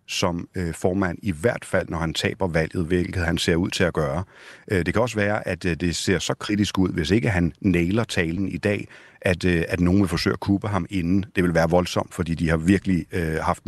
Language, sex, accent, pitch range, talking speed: Danish, male, native, 85-100 Hz, 225 wpm